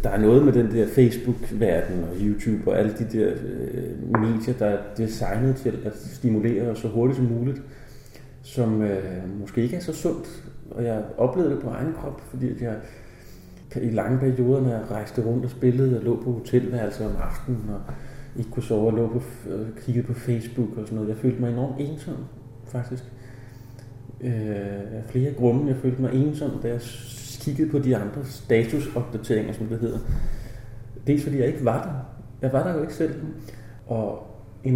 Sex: male